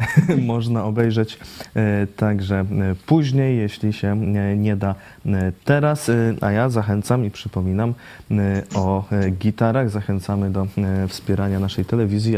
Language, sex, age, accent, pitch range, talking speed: Polish, male, 20-39, native, 95-125 Hz, 100 wpm